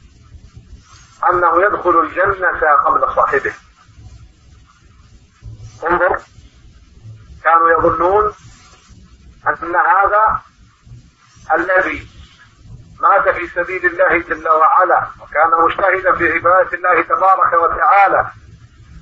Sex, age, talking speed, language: male, 50-69, 75 wpm, English